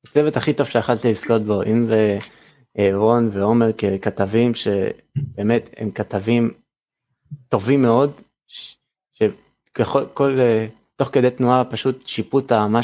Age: 20-39